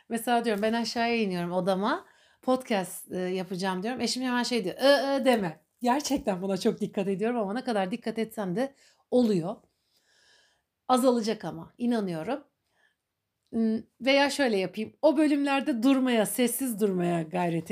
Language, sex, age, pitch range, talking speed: Turkish, female, 60-79, 200-270 Hz, 130 wpm